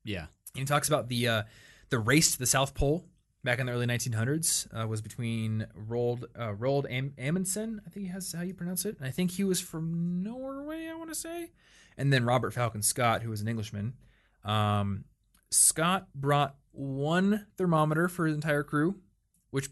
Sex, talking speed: male, 195 wpm